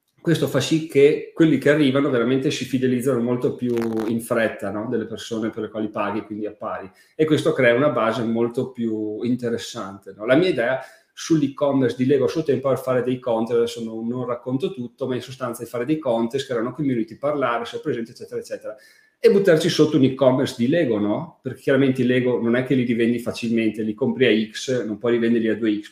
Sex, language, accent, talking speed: male, Italian, native, 220 wpm